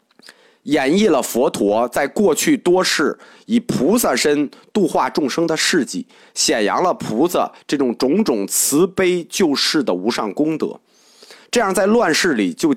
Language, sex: Chinese, male